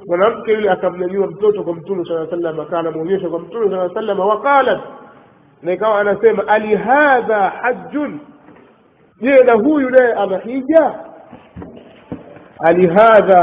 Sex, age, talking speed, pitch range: male, 50-69, 105 wpm, 175-235 Hz